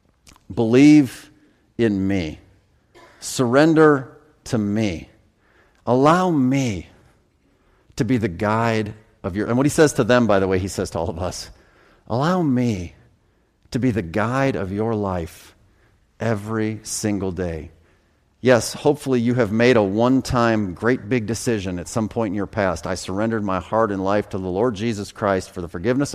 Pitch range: 90-115 Hz